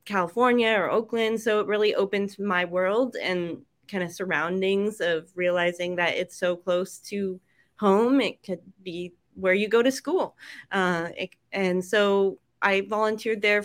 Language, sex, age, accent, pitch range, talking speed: English, female, 20-39, American, 175-205 Hz, 155 wpm